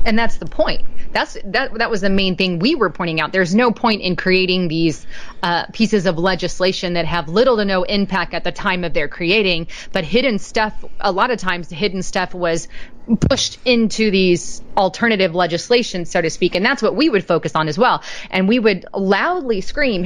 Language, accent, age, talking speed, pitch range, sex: English, American, 30-49, 205 wpm, 180-230 Hz, female